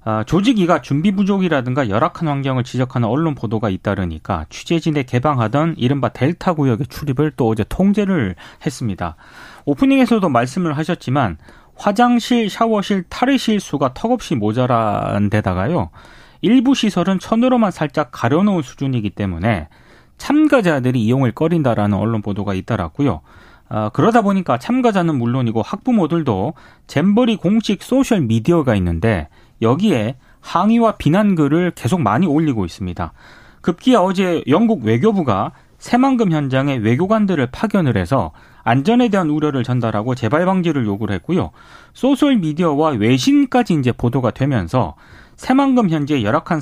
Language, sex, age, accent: Korean, male, 30-49, native